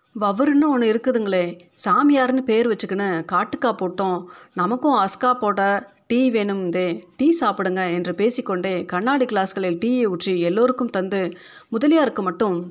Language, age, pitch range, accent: Tamil, 30-49, 185-240 Hz, native